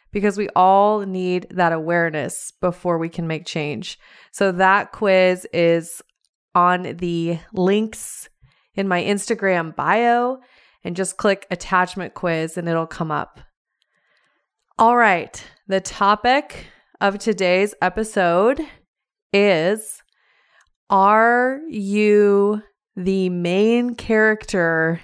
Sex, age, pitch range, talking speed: female, 20-39, 175-205 Hz, 105 wpm